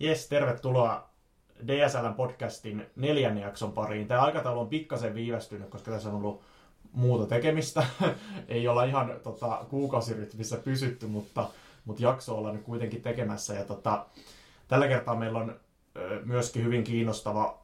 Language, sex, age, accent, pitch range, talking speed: Finnish, male, 20-39, native, 105-125 Hz, 135 wpm